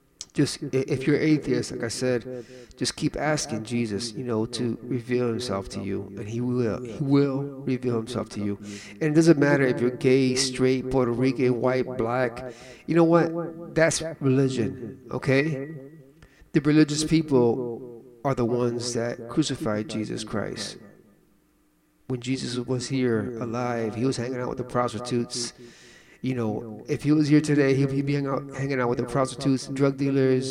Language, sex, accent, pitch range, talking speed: English, male, American, 120-140 Hz, 170 wpm